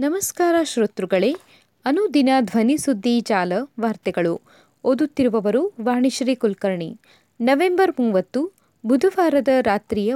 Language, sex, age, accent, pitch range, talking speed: Kannada, female, 30-49, native, 220-295 Hz, 75 wpm